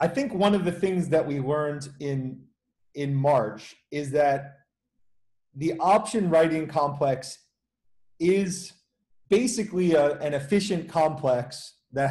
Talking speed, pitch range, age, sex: 120 wpm, 140-175 Hz, 30-49, male